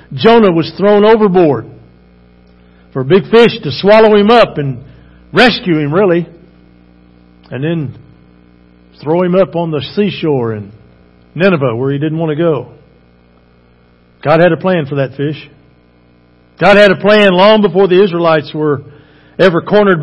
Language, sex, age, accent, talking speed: English, male, 50-69, American, 150 wpm